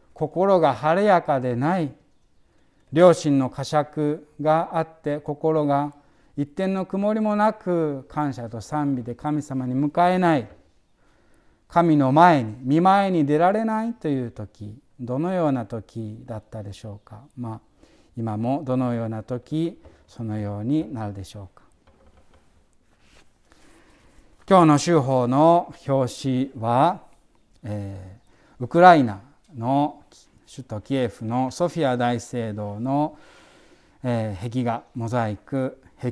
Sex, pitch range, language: male, 115-155 Hz, Japanese